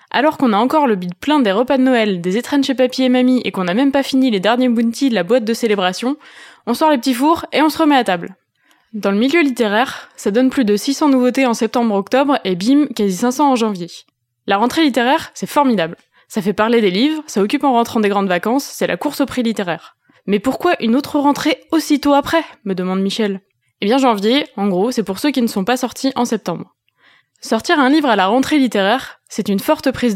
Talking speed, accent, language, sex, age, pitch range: 240 wpm, French, French, female, 20-39, 205-265 Hz